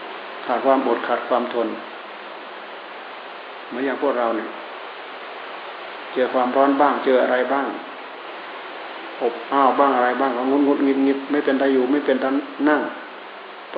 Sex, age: male, 60-79